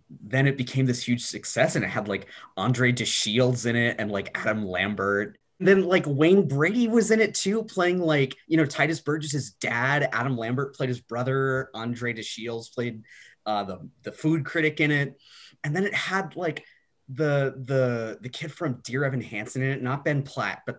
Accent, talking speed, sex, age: American, 200 wpm, male, 30-49